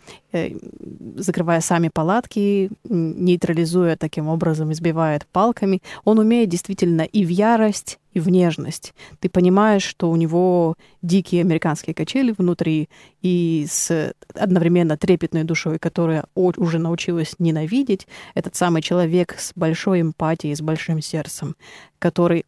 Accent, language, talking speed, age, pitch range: native, Russian, 120 wpm, 20-39, 160-185 Hz